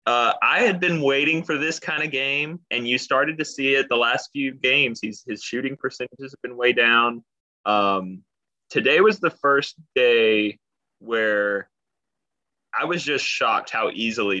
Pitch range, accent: 105-135 Hz, American